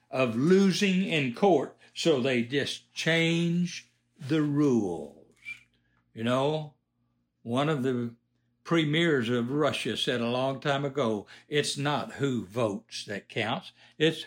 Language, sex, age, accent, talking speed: English, male, 60-79, American, 125 wpm